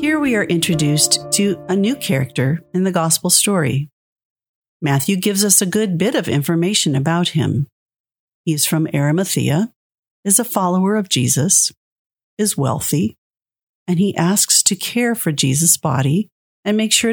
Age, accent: 50-69, American